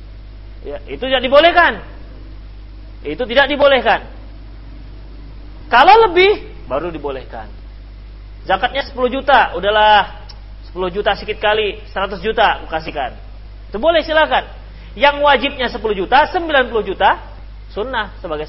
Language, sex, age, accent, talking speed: Indonesian, male, 40-59, native, 105 wpm